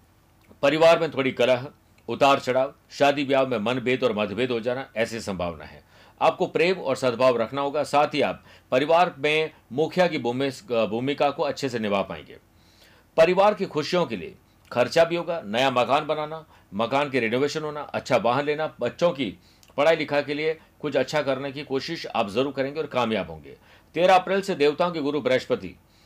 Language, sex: Hindi, male